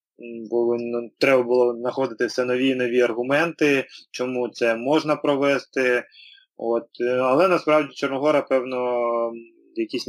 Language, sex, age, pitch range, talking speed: Ukrainian, male, 20-39, 115-135 Hz, 125 wpm